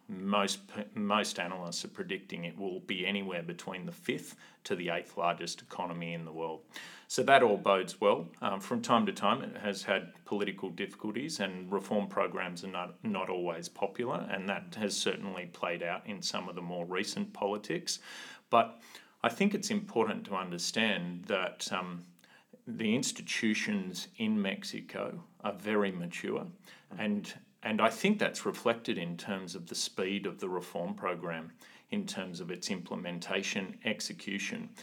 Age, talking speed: 30-49, 160 wpm